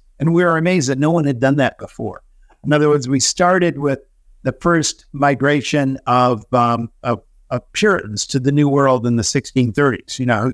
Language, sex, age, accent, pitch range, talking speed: English, male, 50-69, American, 120-145 Hz, 200 wpm